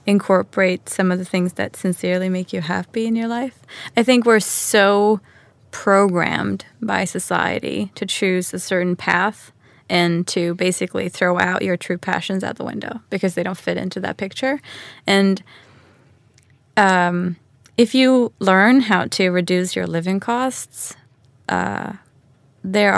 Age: 20-39